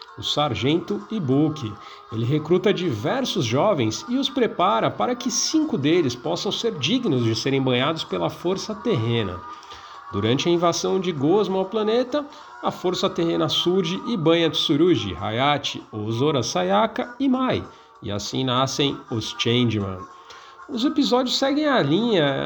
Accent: Brazilian